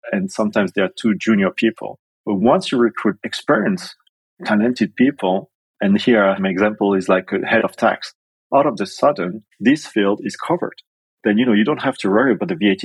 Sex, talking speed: male, 200 wpm